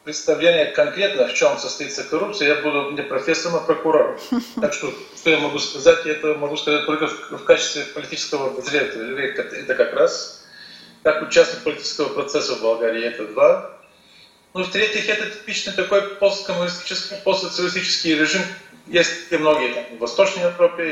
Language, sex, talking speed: Russian, male, 160 wpm